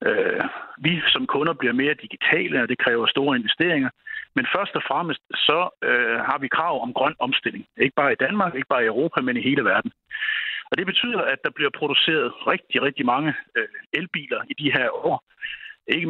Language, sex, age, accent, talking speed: Danish, male, 60-79, native, 185 wpm